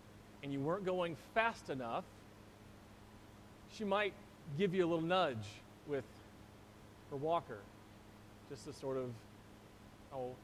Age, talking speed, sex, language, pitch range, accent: 40-59, 120 wpm, male, English, 105-155 Hz, American